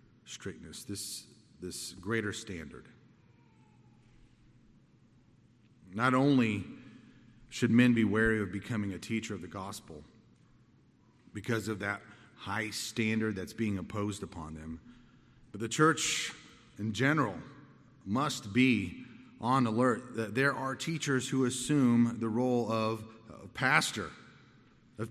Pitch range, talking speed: 100-120 Hz, 115 wpm